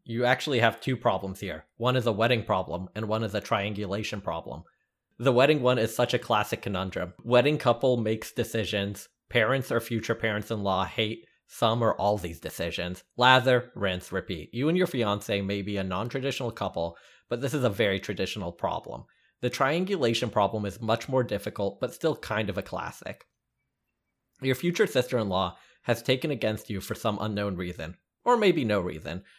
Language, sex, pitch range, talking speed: English, male, 100-125 Hz, 175 wpm